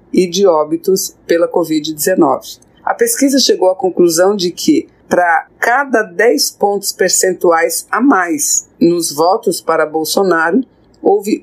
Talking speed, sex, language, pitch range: 125 wpm, female, Portuguese, 175-290 Hz